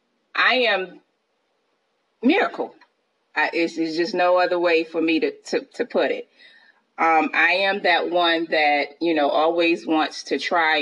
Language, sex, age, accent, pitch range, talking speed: English, female, 30-49, American, 150-195 Hz, 160 wpm